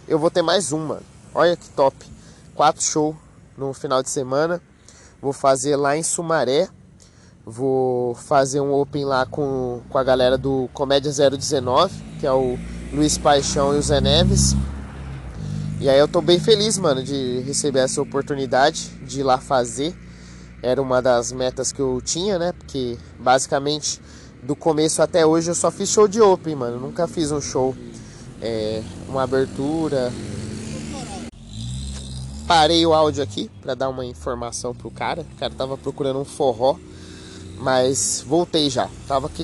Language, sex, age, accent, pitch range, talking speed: Portuguese, male, 20-39, Brazilian, 125-150 Hz, 160 wpm